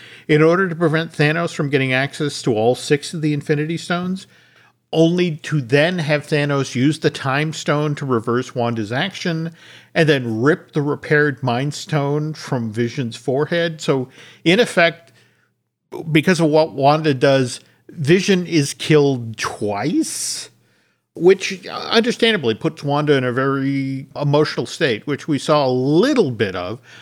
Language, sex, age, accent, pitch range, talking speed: English, male, 50-69, American, 125-160 Hz, 145 wpm